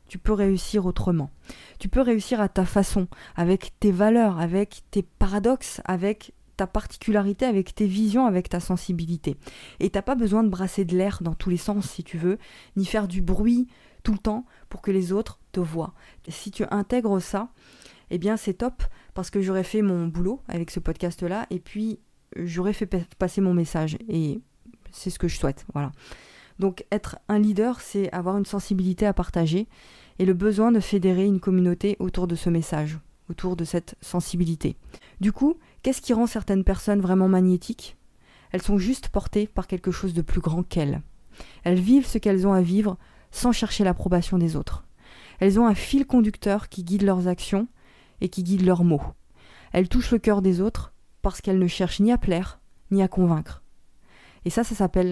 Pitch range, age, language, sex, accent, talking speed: 180-210 Hz, 20-39, French, female, French, 195 wpm